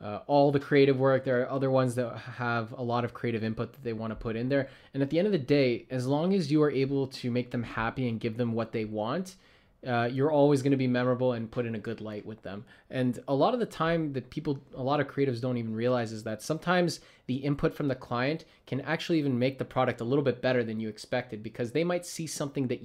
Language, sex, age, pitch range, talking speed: English, male, 20-39, 120-150 Hz, 270 wpm